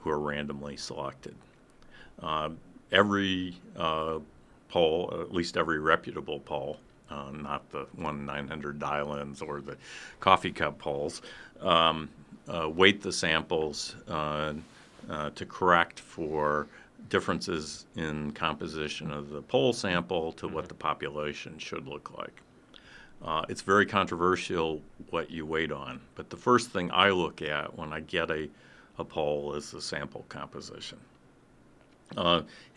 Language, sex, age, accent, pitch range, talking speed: English, male, 50-69, American, 75-85 Hz, 135 wpm